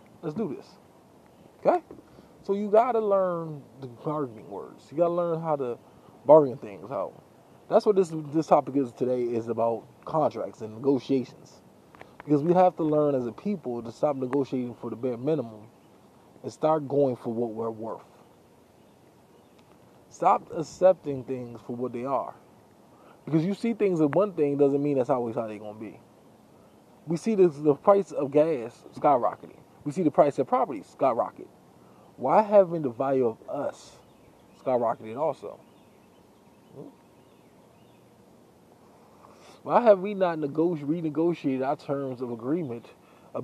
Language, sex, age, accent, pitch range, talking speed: English, male, 20-39, American, 125-180 Hz, 155 wpm